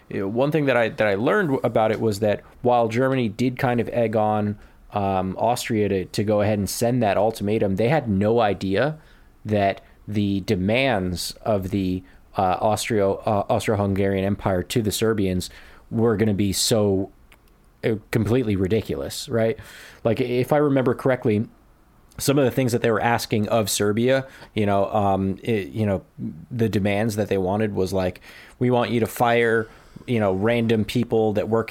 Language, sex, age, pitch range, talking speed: English, male, 20-39, 100-115 Hz, 180 wpm